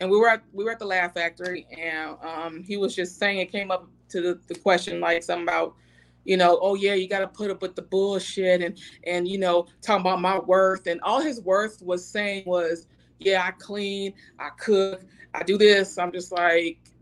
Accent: American